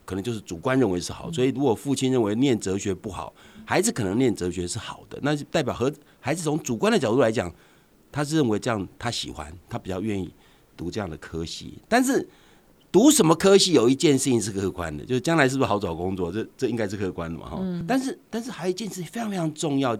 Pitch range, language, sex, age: 110-180 Hz, Chinese, male, 50-69